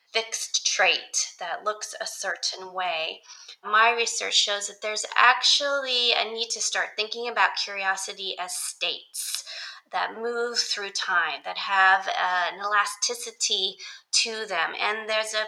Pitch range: 185-230 Hz